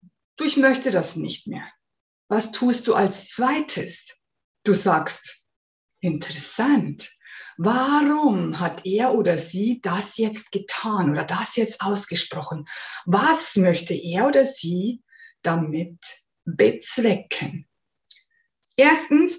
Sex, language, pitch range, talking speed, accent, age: female, German, 205-290 Hz, 105 wpm, German, 50-69